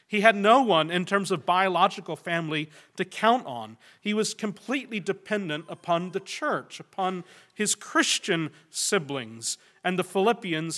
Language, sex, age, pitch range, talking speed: English, male, 40-59, 145-185 Hz, 145 wpm